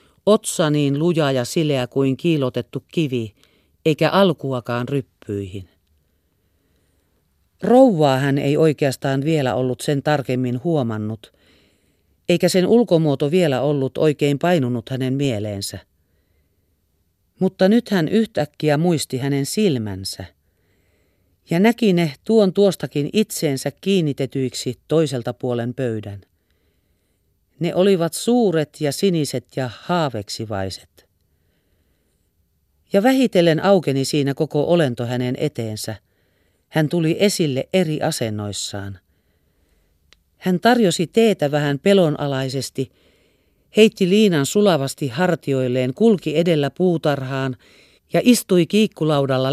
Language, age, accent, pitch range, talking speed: Finnish, 40-59, native, 100-165 Hz, 95 wpm